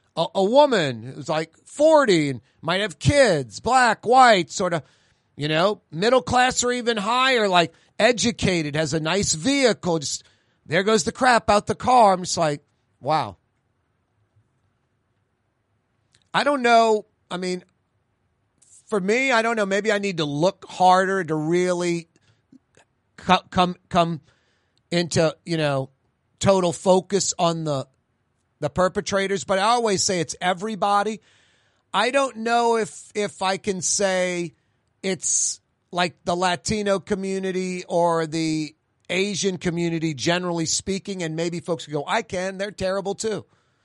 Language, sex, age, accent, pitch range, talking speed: English, male, 40-59, American, 145-210 Hz, 140 wpm